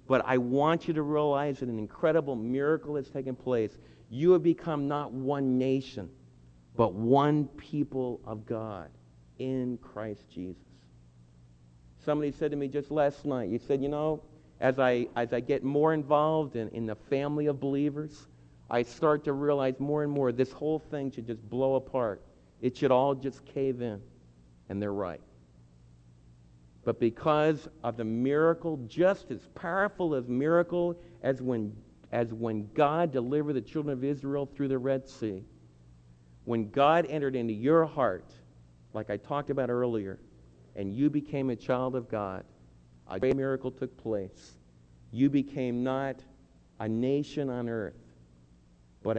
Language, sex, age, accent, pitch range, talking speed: English, male, 50-69, American, 90-145 Hz, 155 wpm